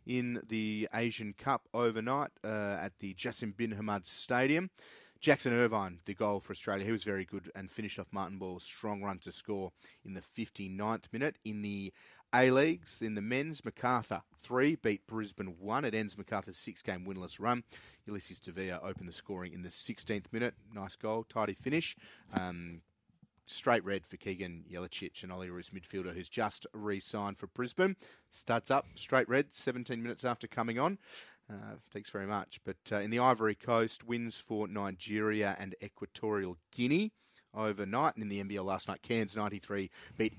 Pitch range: 100-120 Hz